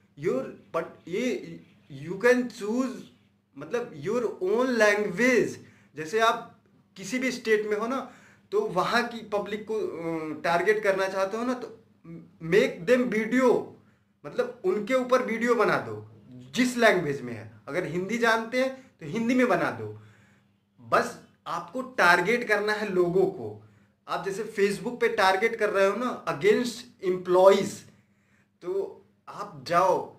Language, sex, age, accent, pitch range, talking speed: Hindi, male, 20-39, native, 170-230 Hz, 140 wpm